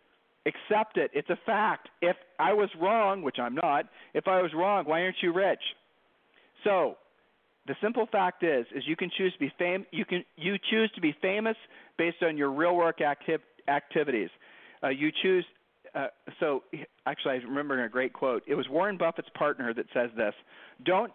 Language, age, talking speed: English, 40-59, 185 wpm